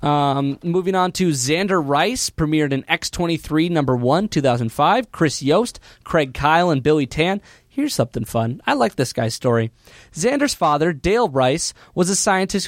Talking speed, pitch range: 160 wpm, 130-175 Hz